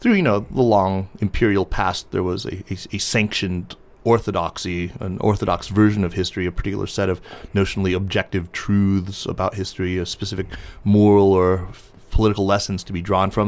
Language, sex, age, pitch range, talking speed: English, male, 30-49, 95-110 Hz, 175 wpm